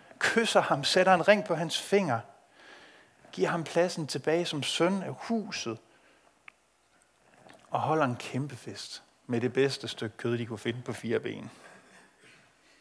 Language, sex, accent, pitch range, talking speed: Danish, male, native, 135-190 Hz, 150 wpm